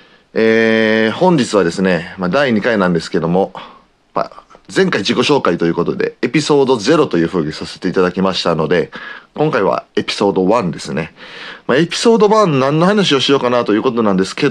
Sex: male